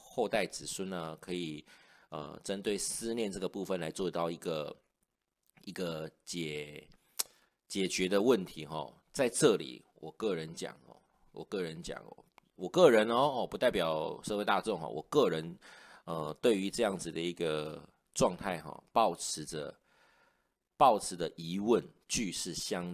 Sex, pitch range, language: male, 80-95 Hz, Chinese